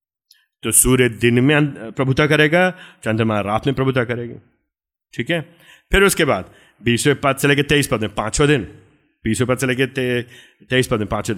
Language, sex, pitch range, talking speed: Hindi, male, 120-180 Hz, 170 wpm